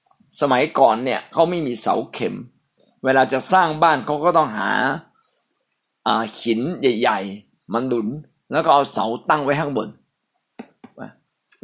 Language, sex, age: Thai, male, 60-79